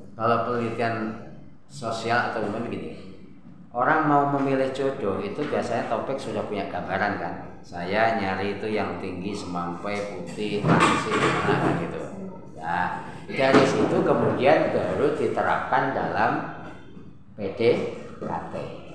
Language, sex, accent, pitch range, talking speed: Indonesian, male, native, 105-140 Hz, 115 wpm